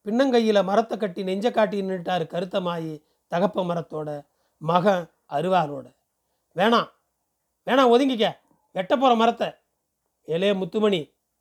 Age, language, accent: 40-59, Tamil, native